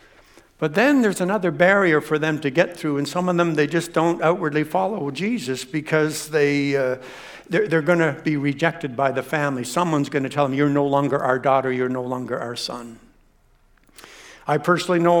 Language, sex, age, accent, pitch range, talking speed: English, male, 60-79, American, 140-170 Hz, 190 wpm